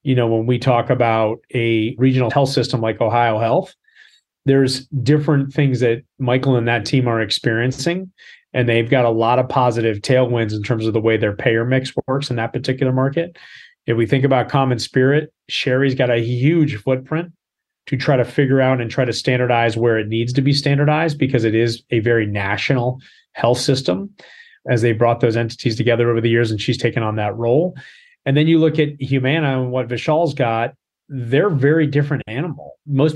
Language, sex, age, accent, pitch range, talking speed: English, male, 30-49, American, 115-140 Hz, 195 wpm